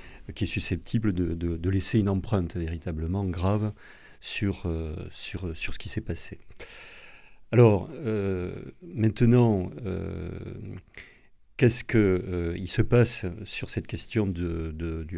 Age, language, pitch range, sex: 40-59, French, 85-105 Hz, male